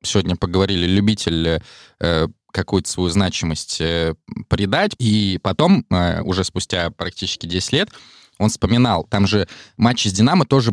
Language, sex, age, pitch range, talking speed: Russian, male, 20-39, 85-105 Hz, 140 wpm